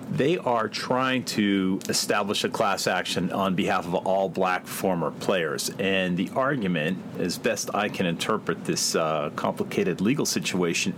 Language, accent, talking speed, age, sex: English, American, 155 wpm, 40-59, male